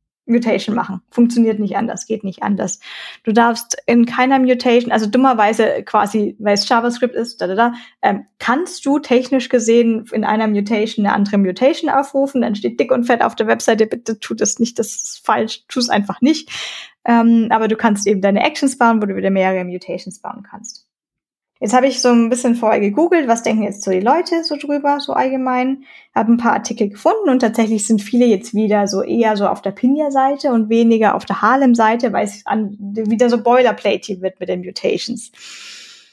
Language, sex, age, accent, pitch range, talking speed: German, female, 10-29, German, 210-255 Hz, 200 wpm